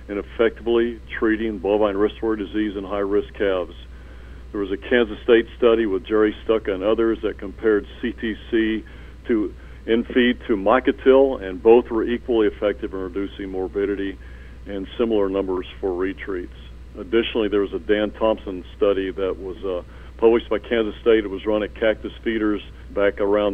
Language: English